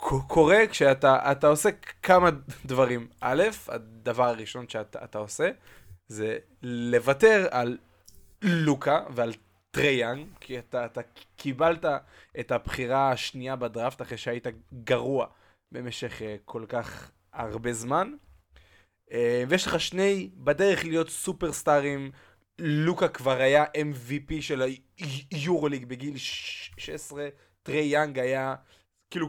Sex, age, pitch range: male, 20-39, 120-160 Hz